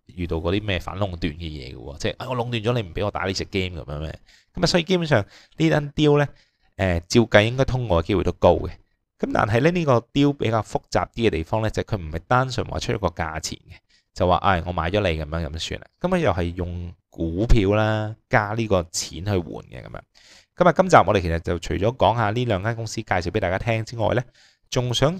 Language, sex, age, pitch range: Chinese, male, 20-39, 85-120 Hz